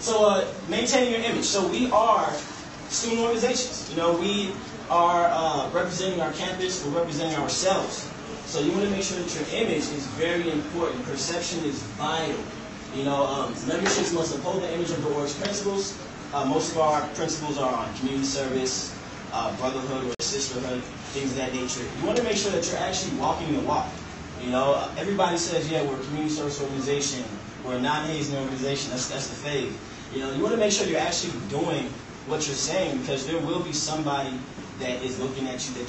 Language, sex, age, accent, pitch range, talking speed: English, male, 20-39, American, 135-170 Hz, 195 wpm